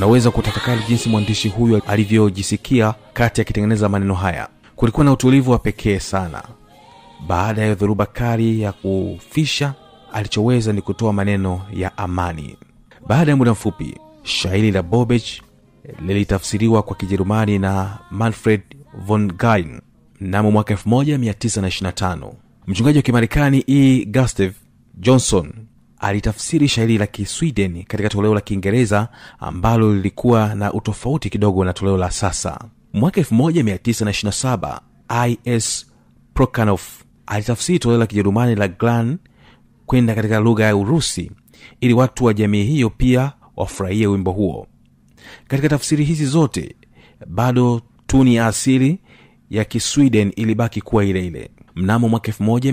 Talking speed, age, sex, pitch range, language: 120 wpm, 30-49, male, 100-120 Hz, Swahili